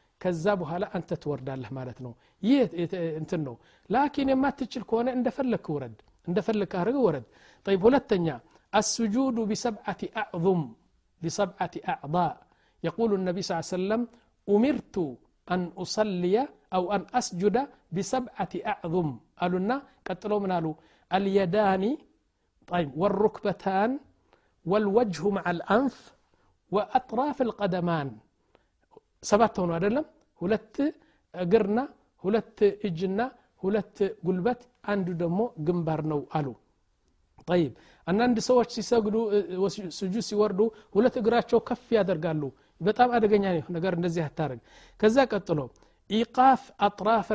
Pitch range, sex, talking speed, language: 175-225 Hz, male, 100 wpm, Amharic